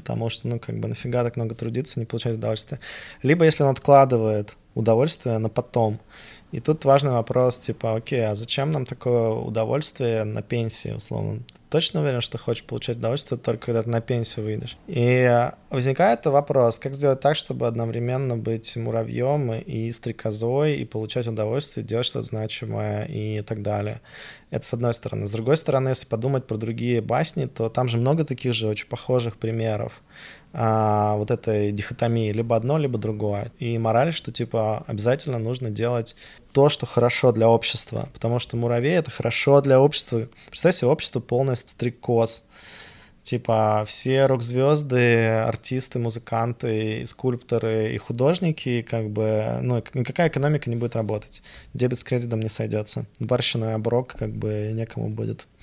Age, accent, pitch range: 20-39, native, 110-130 Hz